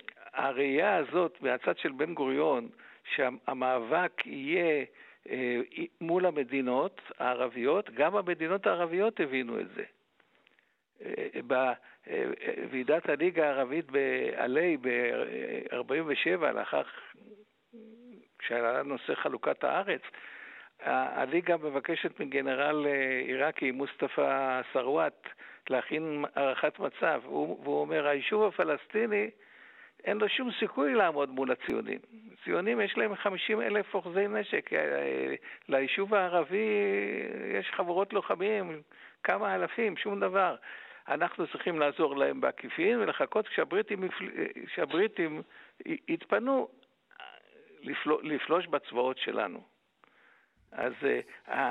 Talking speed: 85 wpm